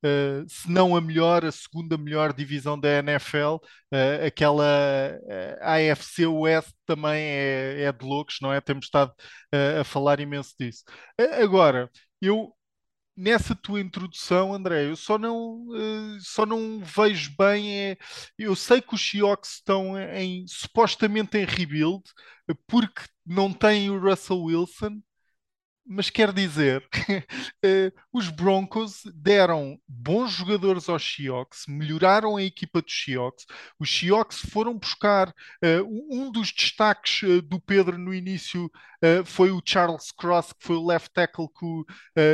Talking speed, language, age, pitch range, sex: 145 wpm, Portuguese, 20-39, 155-210 Hz, male